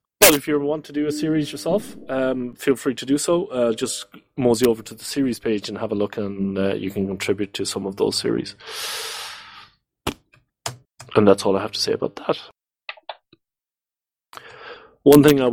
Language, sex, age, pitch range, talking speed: English, male, 30-49, 100-120 Hz, 185 wpm